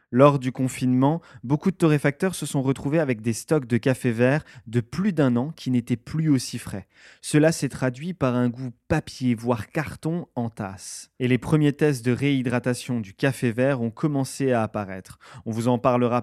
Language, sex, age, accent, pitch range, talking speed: French, male, 20-39, French, 120-150 Hz, 190 wpm